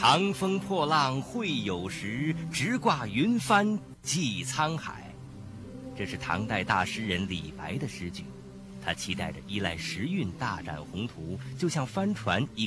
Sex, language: male, Chinese